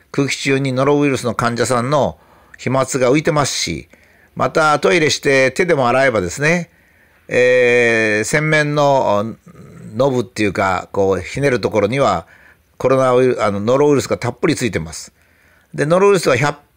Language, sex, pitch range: Japanese, male, 115-165 Hz